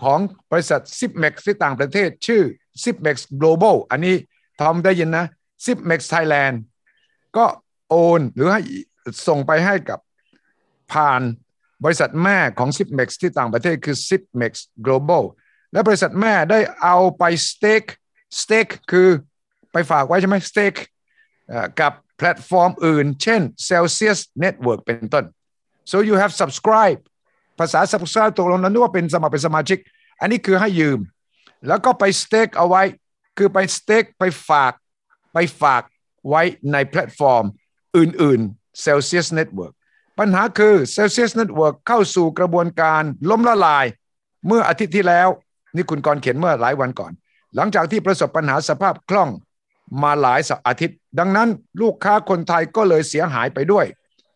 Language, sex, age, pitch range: English, male, 60-79, 150-205 Hz